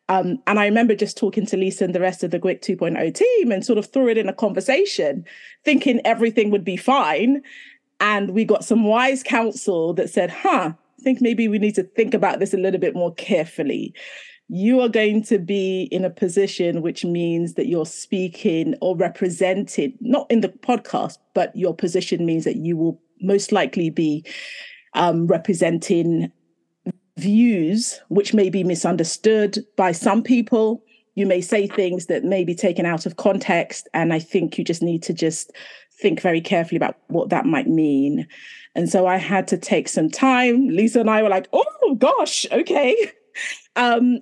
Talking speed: 180 wpm